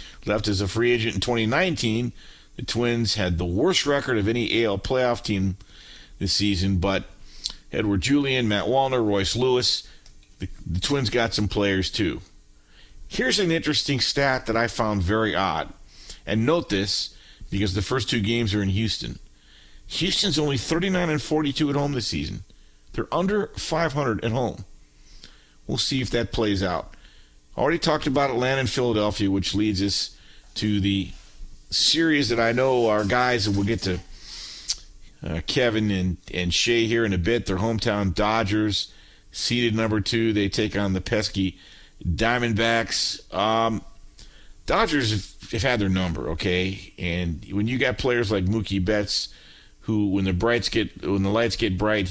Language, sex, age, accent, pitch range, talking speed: English, male, 50-69, American, 95-120 Hz, 165 wpm